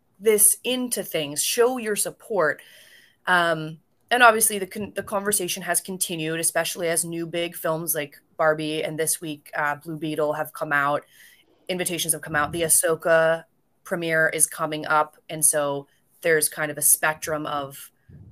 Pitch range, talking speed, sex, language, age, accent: 150-185 Hz, 160 wpm, female, English, 20-39, American